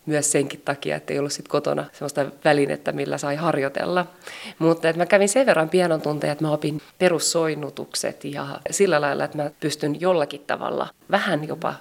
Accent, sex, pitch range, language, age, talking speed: native, female, 145-165 Hz, Finnish, 30-49, 175 wpm